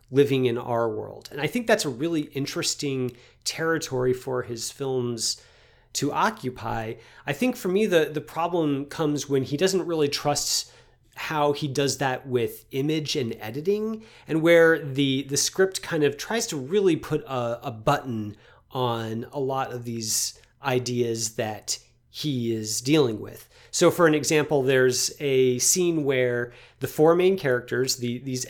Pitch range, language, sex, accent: 120-155 Hz, English, male, American